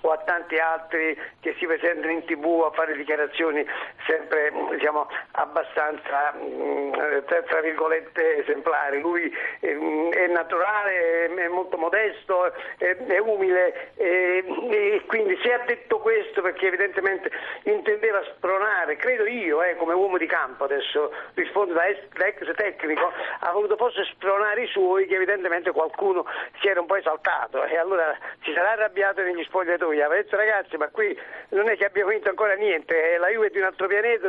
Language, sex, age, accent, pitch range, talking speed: Italian, male, 50-69, native, 165-245 Hz, 160 wpm